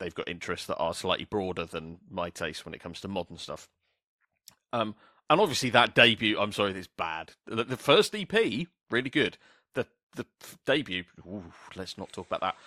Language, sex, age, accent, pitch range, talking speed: English, male, 40-59, British, 95-130 Hz, 180 wpm